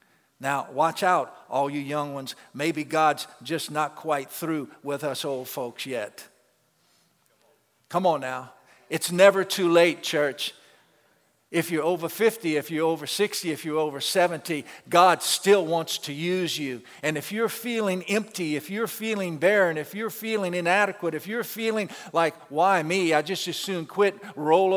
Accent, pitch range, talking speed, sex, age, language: American, 160-205 Hz, 165 wpm, male, 50-69, English